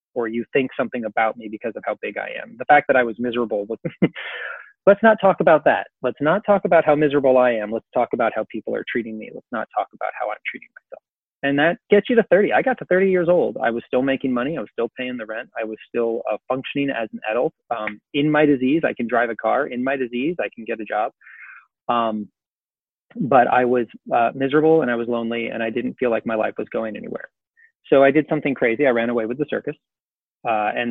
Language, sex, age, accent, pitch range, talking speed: English, male, 30-49, American, 120-150 Hz, 250 wpm